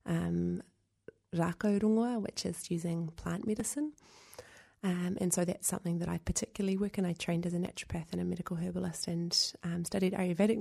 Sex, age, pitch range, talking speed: female, 30-49, 165-180 Hz, 165 wpm